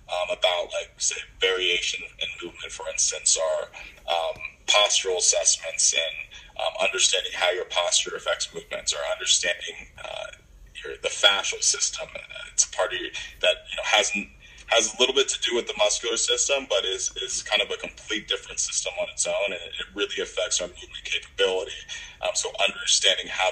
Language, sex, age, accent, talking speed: English, male, 20-39, American, 180 wpm